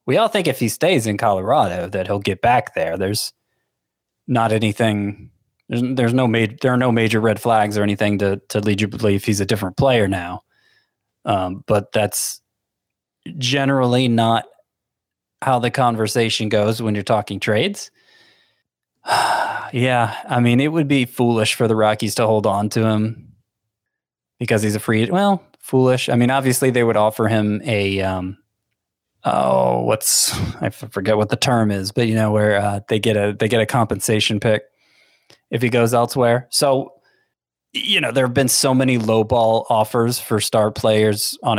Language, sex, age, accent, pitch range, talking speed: English, male, 20-39, American, 105-125 Hz, 175 wpm